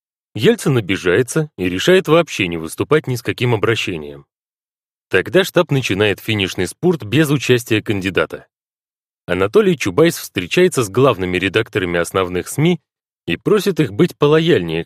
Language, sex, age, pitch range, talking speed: Russian, male, 30-49, 95-155 Hz, 130 wpm